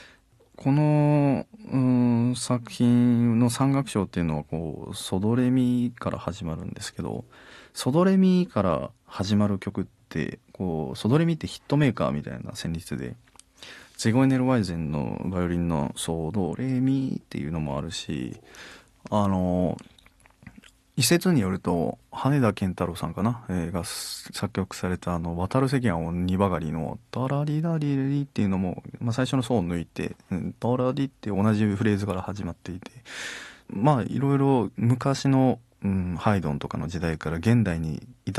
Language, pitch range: Japanese, 85-125 Hz